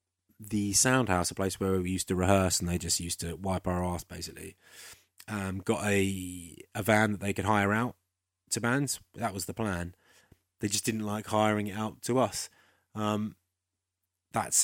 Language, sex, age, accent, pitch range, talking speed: English, male, 20-39, British, 90-105 Hz, 185 wpm